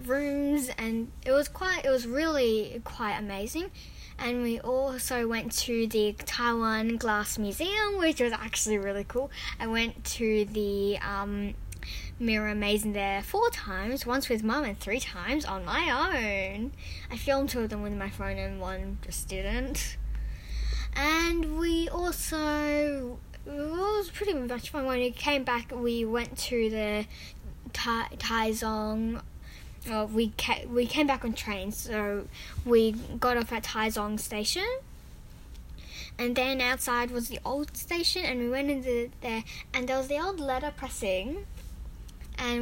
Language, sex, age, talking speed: English, female, 10-29, 155 wpm